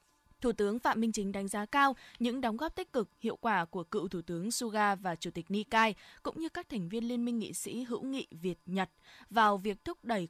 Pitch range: 195-260 Hz